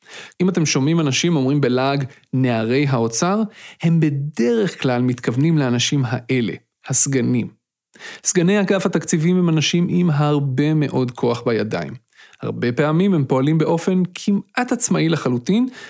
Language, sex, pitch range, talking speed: Hebrew, male, 130-175 Hz, 125 wpm